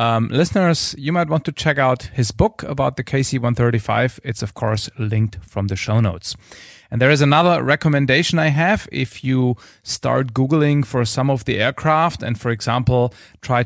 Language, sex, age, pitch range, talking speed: English, male, 30-49, 105-130 Hz, 180 wpm